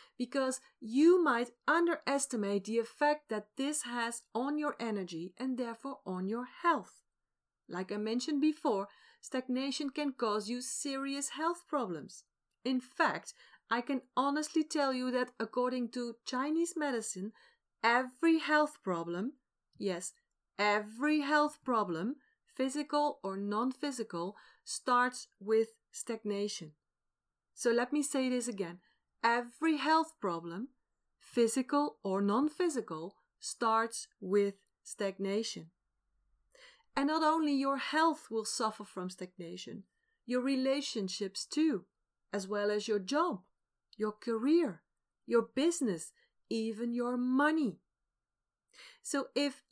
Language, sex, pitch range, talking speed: Dutch, female, 215-295 Hz, 115 wpm